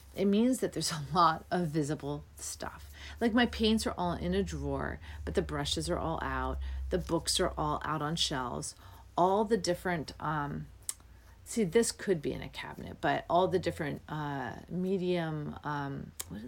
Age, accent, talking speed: 40-59, American, 180 wpm